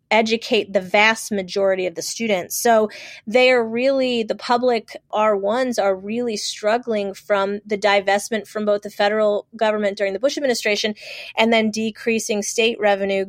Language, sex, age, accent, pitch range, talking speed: English, female, 30-49, American, 200-235 Hz, 155 wpm